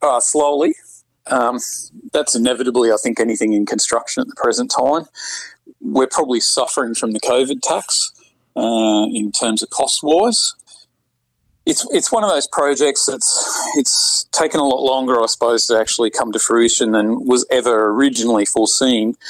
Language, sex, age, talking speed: English, male, 40-59, 155 wpm